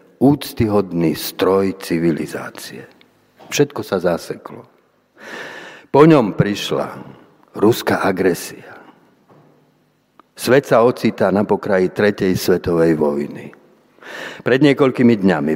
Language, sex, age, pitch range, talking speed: Slovak, male, 50-69, 90-115 Hz, 85 wpm